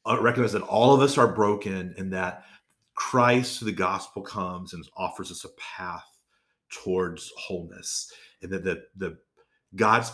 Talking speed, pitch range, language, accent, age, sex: 155 wpm, 95-130 Hz, English, American, 30-49, male